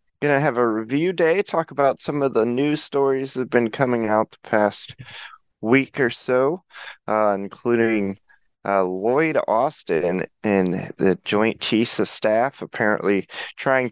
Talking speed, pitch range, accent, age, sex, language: 160 wpm, 100-125 Hz, American, 20-39, male, English